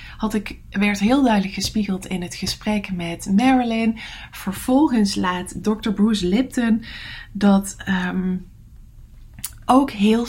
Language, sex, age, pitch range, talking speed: English, female, 20-39, 185-240 Hz, 100 wpm